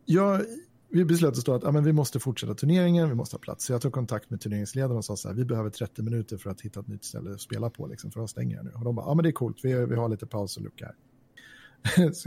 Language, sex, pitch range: English, male, 115-145 Hz